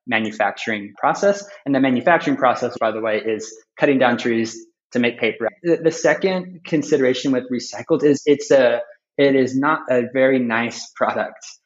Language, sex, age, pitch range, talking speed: English, male, 20-39, 115-145 Hz, 160 wpm